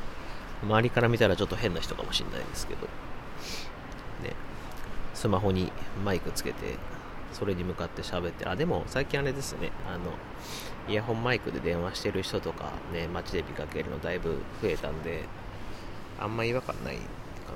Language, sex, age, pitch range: Japanese, male, 30-49, 85-110 Hz